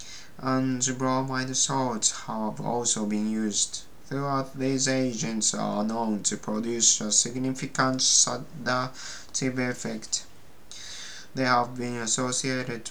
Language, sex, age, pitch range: Japanese, male, 20-39, 110-130 Hz